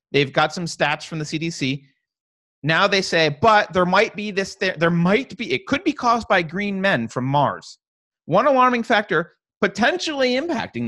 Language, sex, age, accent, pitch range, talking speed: English, male, 30-49, American, 135-200 Hz, 175 wpm